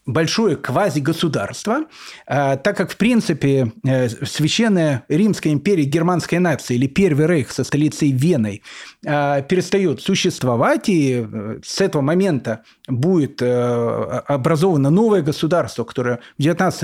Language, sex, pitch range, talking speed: Russian, male, 145-210 Hz, 105 wpm